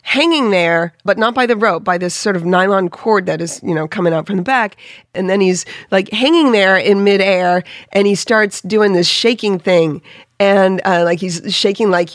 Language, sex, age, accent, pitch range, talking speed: English, female, 40-59, American, 180-240 Hz, 210 wpm